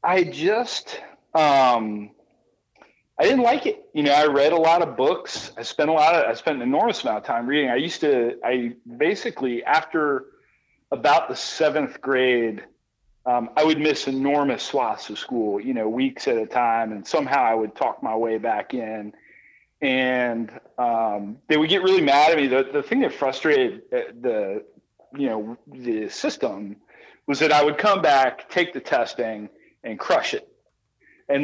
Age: 40-59